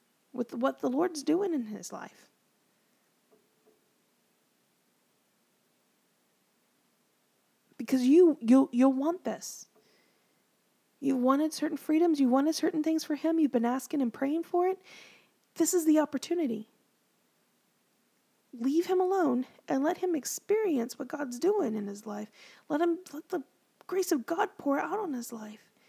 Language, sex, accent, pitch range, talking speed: English, female, American, 235-305 Hz, 140 wpm